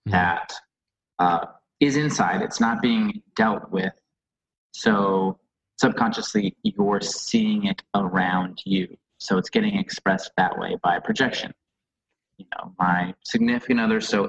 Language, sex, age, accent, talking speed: English, male, 20-39, American, 130 wpm